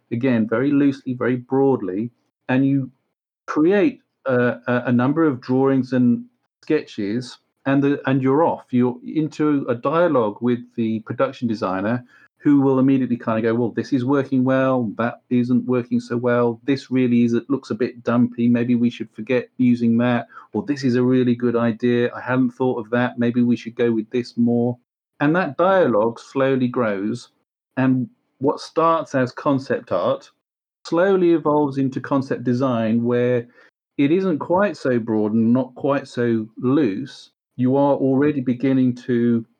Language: English